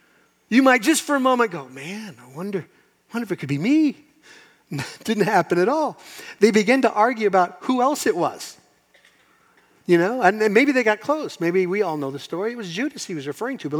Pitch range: 135-190 Hz